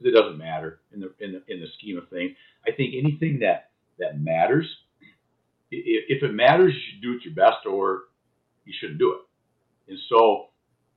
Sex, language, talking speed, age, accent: male, English, 190 wpm, 50-69, American